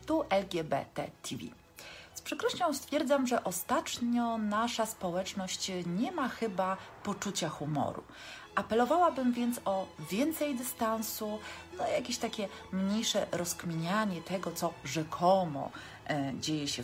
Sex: female